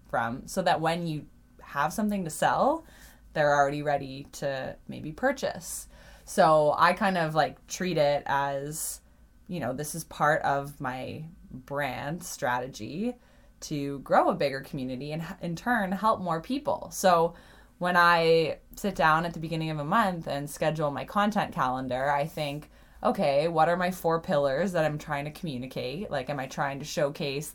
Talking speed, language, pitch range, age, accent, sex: 170 wpm, English, 140-175 Hz, 20-39, American, female